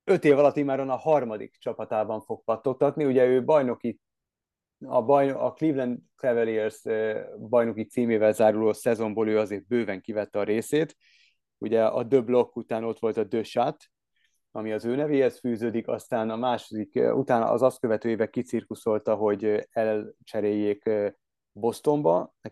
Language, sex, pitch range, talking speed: Hungarian, male, 110-125 Hz, 145 wpm